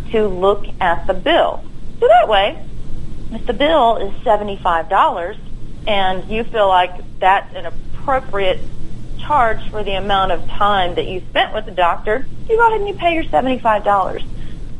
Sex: female